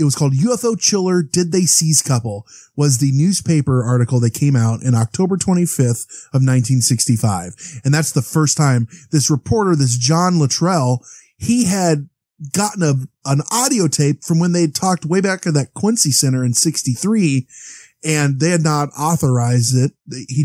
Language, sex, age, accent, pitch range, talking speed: English, male, 20-39, American, 125-165 Hz, 165 wpm